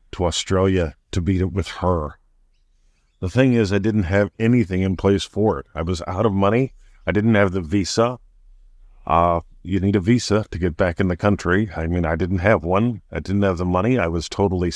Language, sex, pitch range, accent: English, male, 80-105 Hz, American